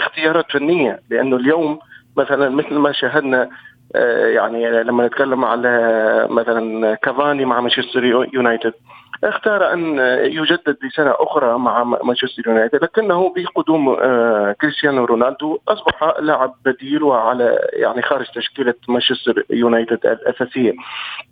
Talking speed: 110 wpm